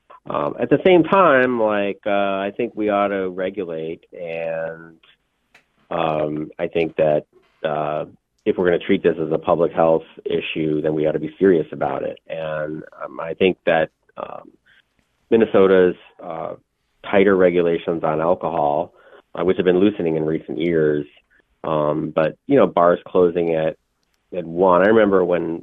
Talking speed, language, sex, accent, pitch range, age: 165 wpm, English, male, American, 80-100 Hz, 30-49